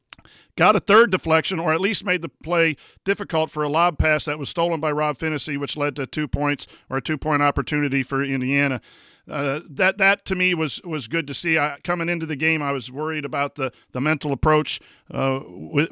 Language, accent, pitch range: English, American, 140-175 Hz